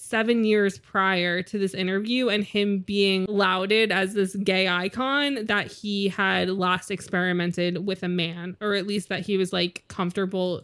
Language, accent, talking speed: English, American, 170 wpm